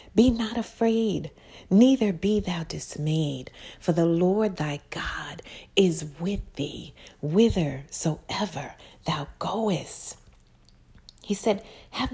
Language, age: English, 40-59